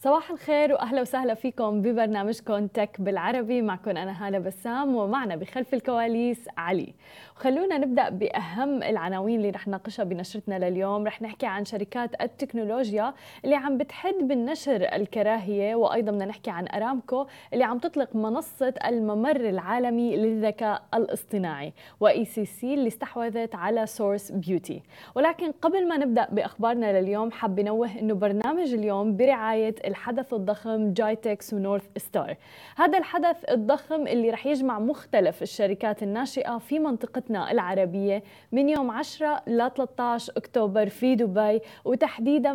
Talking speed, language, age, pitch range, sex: 135 wpm, Arabic, 20-39, 210-270 Hz, female